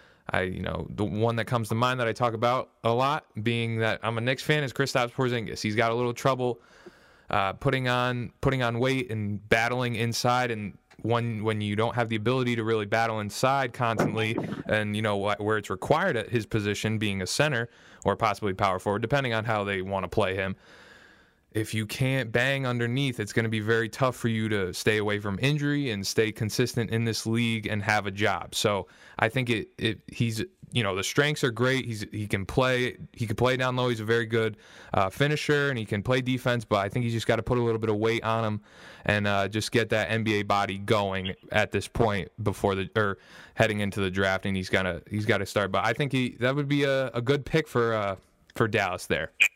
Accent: American